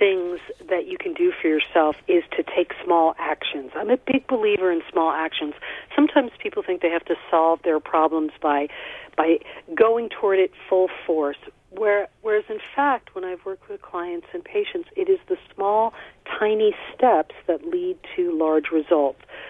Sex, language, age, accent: female, English, 40-59, American